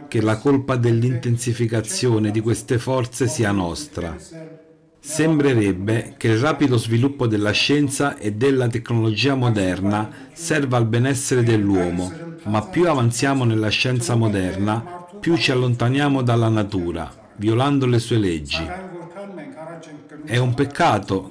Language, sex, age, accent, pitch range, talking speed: Italian, male, 50-69, native, 110-145 Hz, 120 wpm